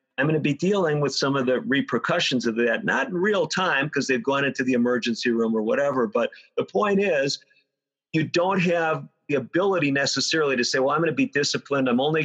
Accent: American